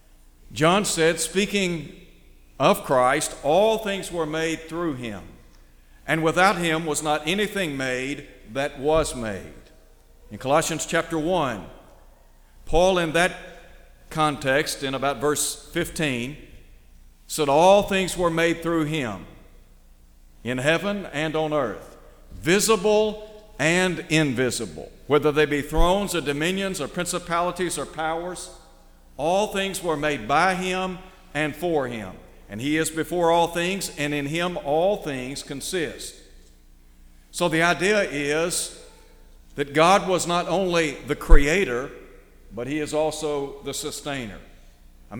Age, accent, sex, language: 50-69, American, male, English